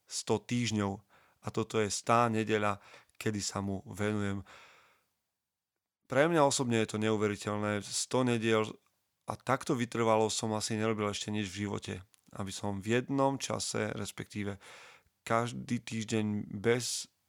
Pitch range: 100-120 Hz